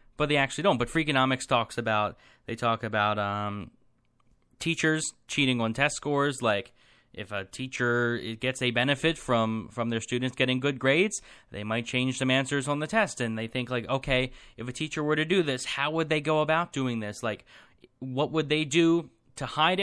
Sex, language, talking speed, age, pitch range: male, English, 195 wpm, 20-39, 115-145 Hz